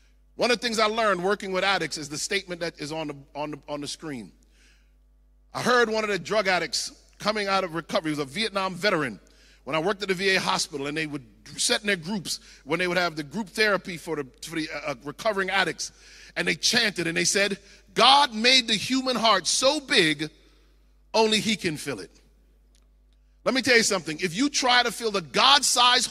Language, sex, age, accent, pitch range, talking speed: English, male, 40-59, American, 150-245 Hz, 220 wpm